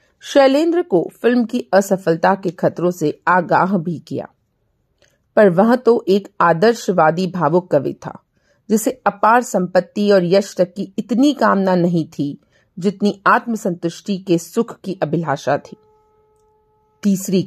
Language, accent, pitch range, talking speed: Hindi, native, 175-240 Hz, 130 wpm